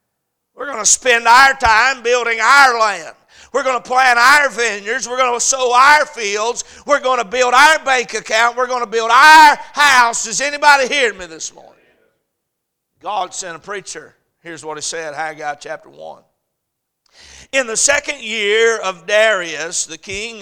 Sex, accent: male, American